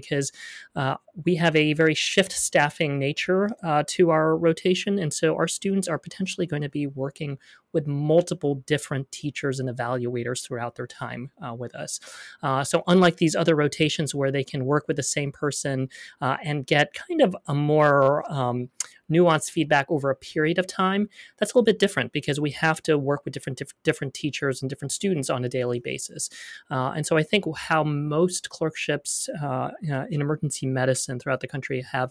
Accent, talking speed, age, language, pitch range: American, 195 wpm, 30-49, English, 135-165 Hz